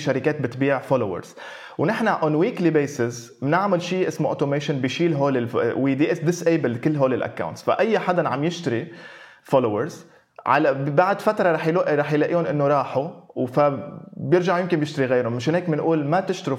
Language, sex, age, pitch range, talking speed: Arabic, male, 20-39, 135-175 Hz, 150 wpm